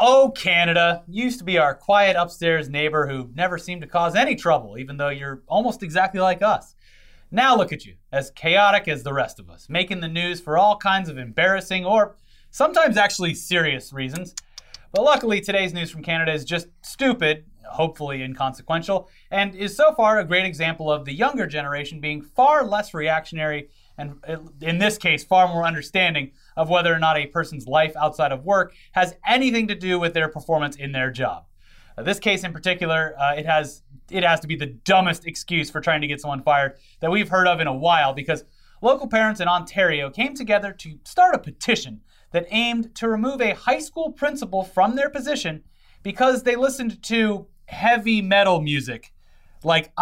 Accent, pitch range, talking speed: American, 150-205 Hz, 190 wpm